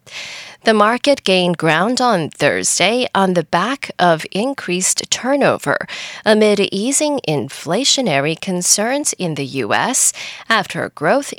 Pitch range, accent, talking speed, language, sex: 170-250 Hz, American, 110 wpm, English, female